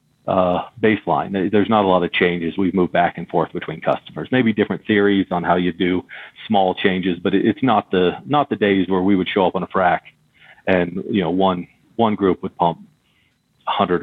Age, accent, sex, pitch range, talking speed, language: 40-59, American, male, 90-100 Hz, 205 wpm, English